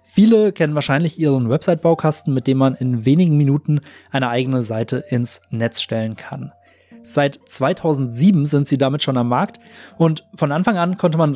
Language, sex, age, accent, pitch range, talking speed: German, male, 20-39, German, 130-175 Hz, 170 wpm